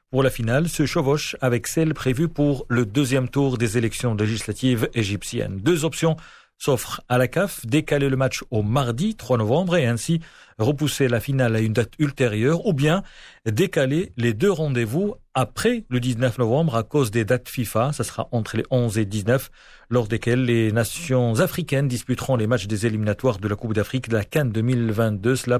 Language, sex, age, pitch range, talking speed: Arabic, male, 40-59, 115-145 Hz, 185 wpm